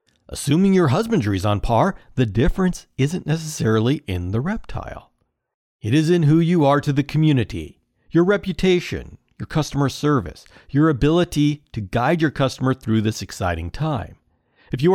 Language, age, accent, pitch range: English, 50-69, American, 115-155 Hz